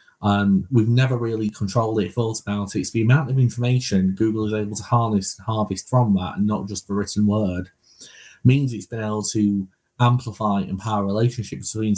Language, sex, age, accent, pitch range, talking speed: English, male, 20-39, British, 100-110 Hz, 200 wpm